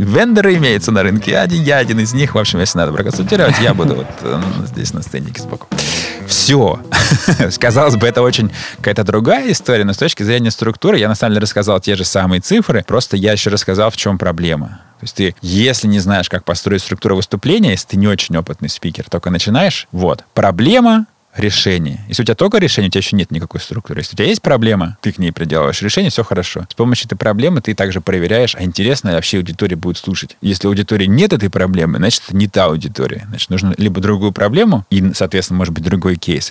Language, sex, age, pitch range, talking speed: Russian, male, 20-39, 90-115 Hz, 210 wpm